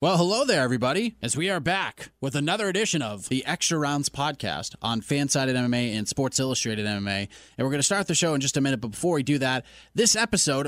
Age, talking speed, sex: 30-49, 235 wpm, male